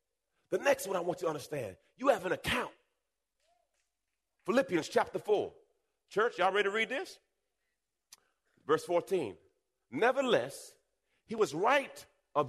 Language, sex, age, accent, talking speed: English, male, 40-59, American, 135 wpm